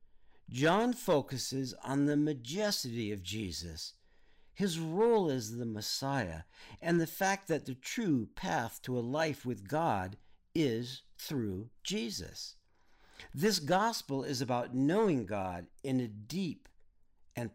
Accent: American